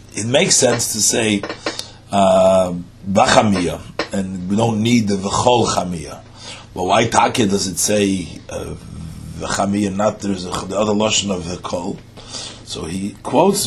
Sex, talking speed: male, 150 wpm